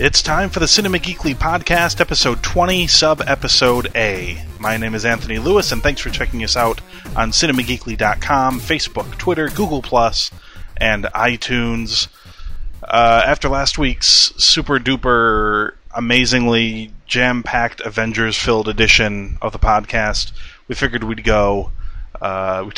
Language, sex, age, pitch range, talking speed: English, male, 30-49, 100-120 Hz, 125 wpm